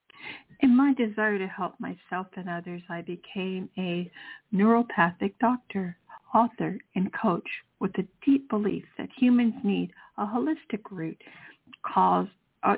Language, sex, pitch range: English, female, 180-230 Hz